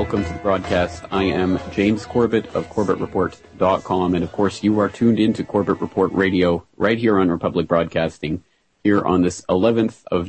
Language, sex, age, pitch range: English, male, 30-49, 85-100 Hz